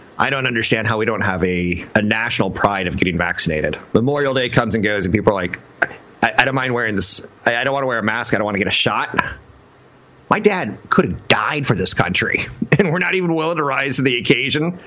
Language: English